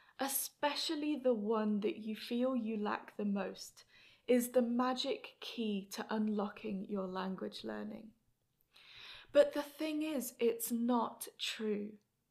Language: English